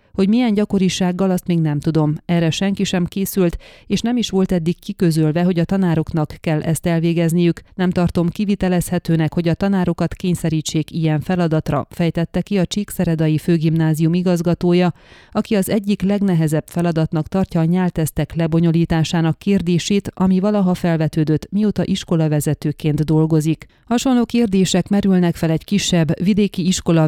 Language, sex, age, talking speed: Hungarian, female, 30-49, 135 wpm